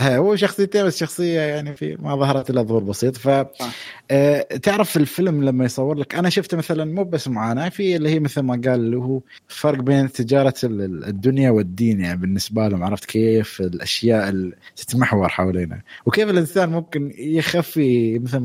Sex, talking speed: male, 160 wpm